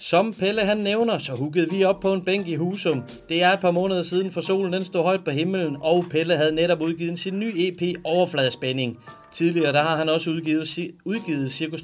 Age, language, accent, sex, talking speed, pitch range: 30-49, Danish, native, male, 220 wpm, 155-185 Hz